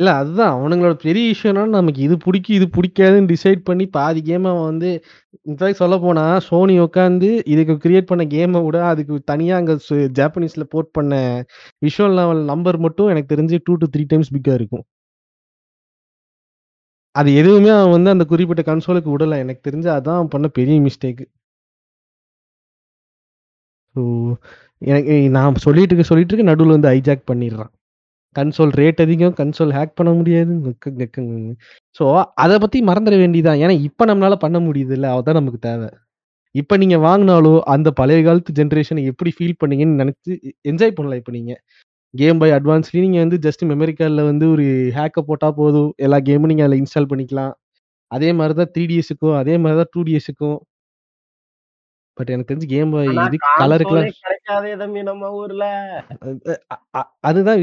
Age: 20-39